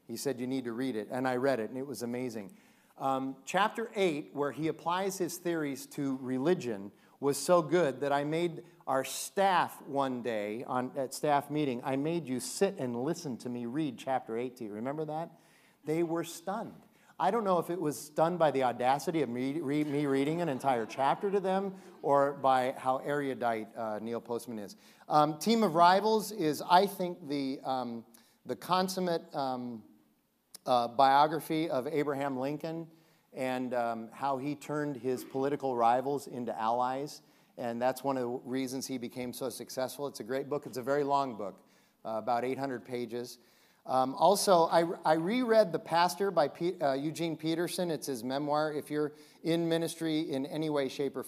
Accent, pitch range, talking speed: American, 125-160 Hz, 185 wpm